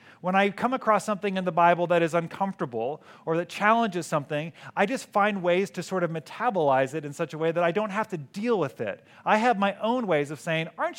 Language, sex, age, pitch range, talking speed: English, male, 40-59, 165-220 Hz, 240 wpm